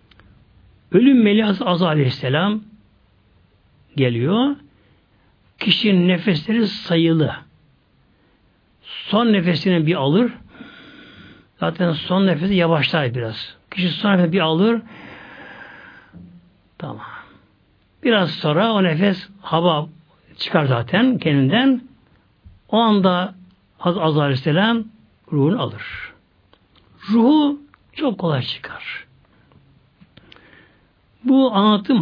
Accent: native